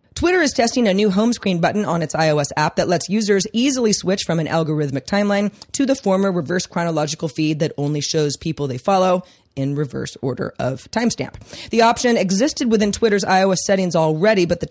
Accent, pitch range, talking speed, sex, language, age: American, 165-225 Hz, 195 wpm, female, English, 30-49